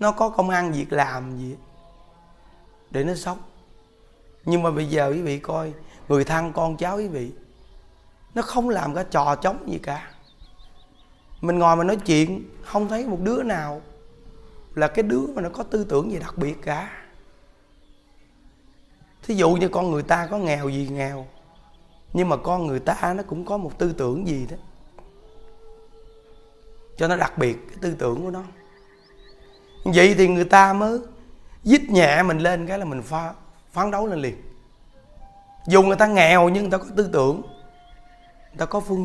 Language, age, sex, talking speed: Vietnamese, 20-39, male, 180 wpm